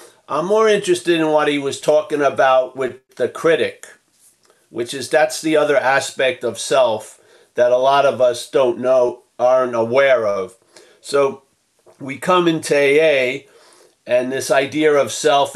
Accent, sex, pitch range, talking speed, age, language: American, male, 125-160 Hz, 155 wpm, 50-69, English